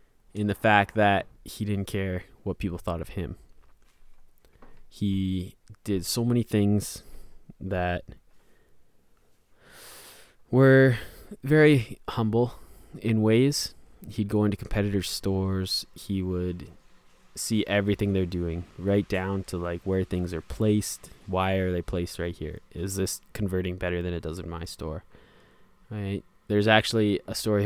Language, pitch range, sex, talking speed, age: English, 90-105 Hz, male, 135 wpm, 20-39